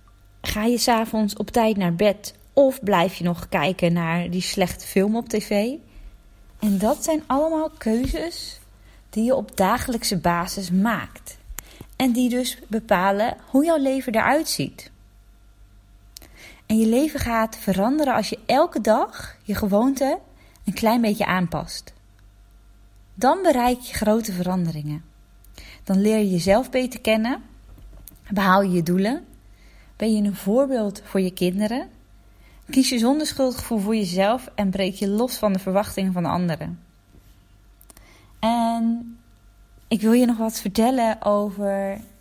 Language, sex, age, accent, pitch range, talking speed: Dutch, female, 20-39, Dutch, 185-245 Hz, 140 wpm